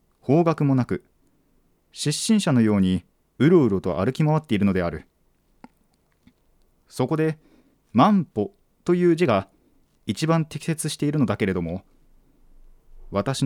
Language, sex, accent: Japanese, male, native